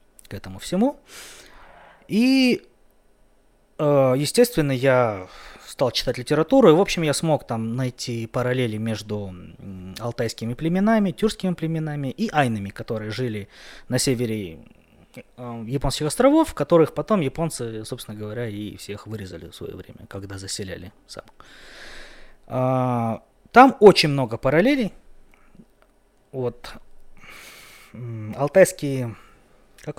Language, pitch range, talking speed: Russian, 110-165 Hz, 100 wpm